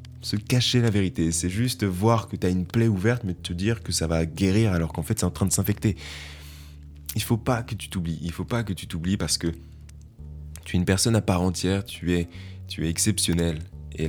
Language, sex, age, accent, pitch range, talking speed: French, male, 20-39, French, 80-105 Hz, 245 wpm